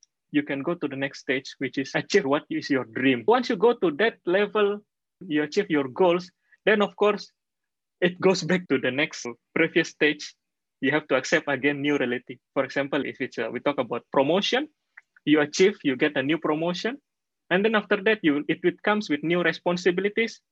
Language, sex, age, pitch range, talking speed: English, male, 20-39, 140-185 Hz, 200 wpm